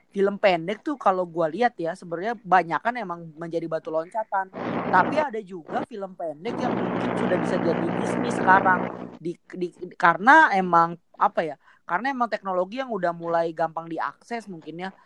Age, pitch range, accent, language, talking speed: 20-39, 165-210 Hz, native, Indonesian, 165 wpm